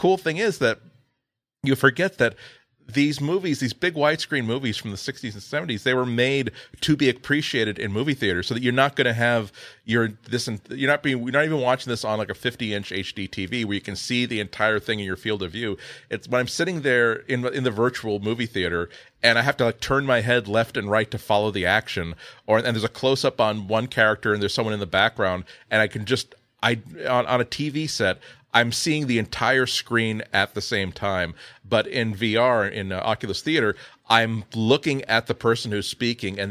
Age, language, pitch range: 40-59, English, 100-125 Hz